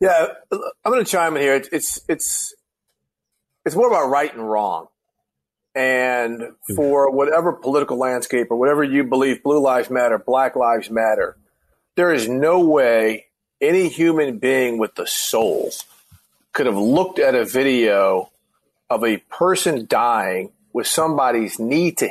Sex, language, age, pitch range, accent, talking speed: male, English, 40-59, 110-150 Hz, American, 150 wpm